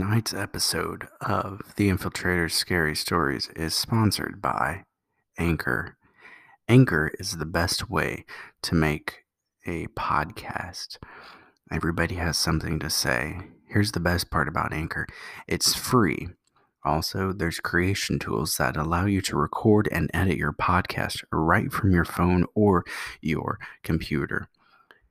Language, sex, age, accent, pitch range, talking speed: English, male, 30-49, American, 80-95 Hz, 125 wpm